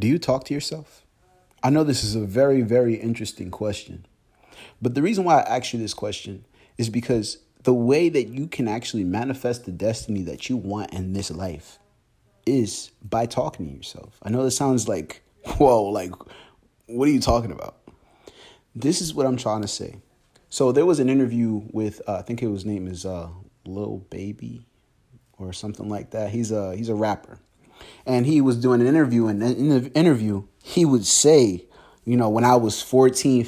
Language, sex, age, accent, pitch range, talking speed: English, male, 30-49, American, 105-130 Hz, 190 wpm